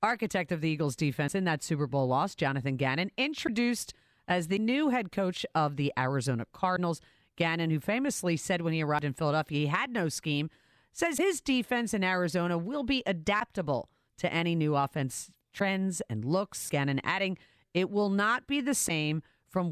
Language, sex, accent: English, female, American